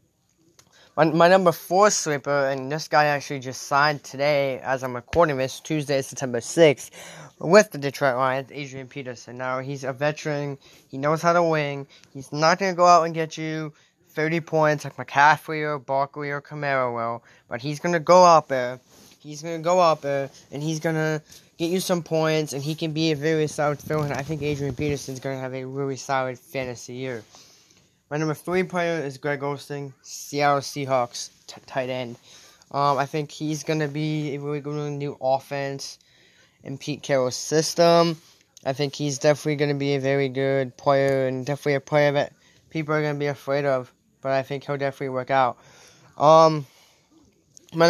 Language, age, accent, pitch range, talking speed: English, 10-29, American, 135-160 Hz, 195 wpm